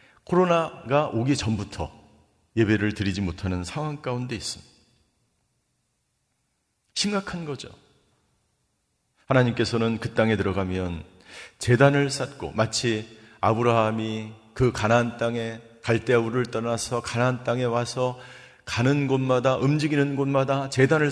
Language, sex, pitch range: Korean, male, 110-145 Hz